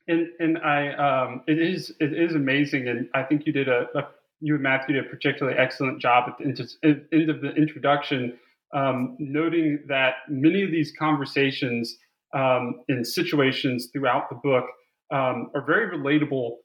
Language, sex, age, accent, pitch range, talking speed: English, male, 30-49, American, 130-150 Hz, 175 wpm